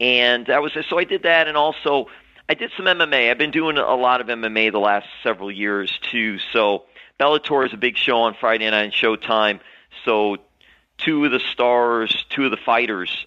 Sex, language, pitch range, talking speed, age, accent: male, English, 100-120 Hz, 205 wpm, 40-59, American